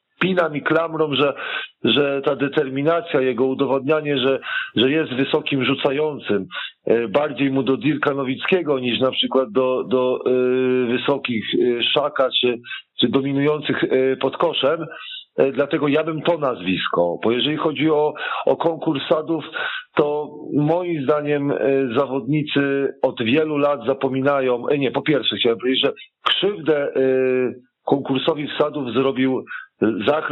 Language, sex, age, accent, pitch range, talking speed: Polish, male, 40-59, native, 135-160 Hz, 120 wpm